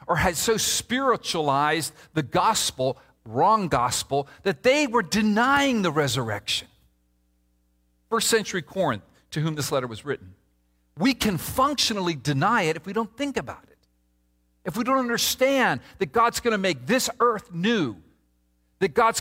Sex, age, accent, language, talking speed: male, 50-69, American, English, 150 wpm